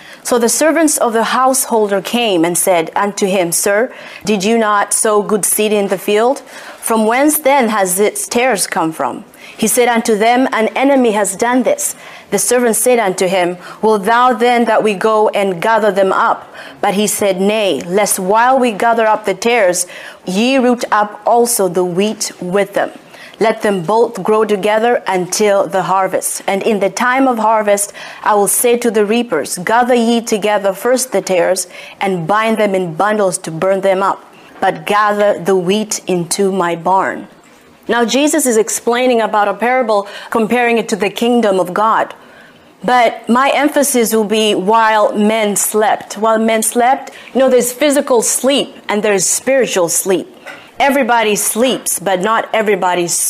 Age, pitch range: 30-49, 200-245 Hz